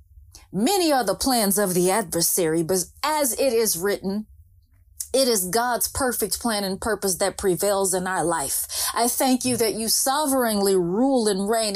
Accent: American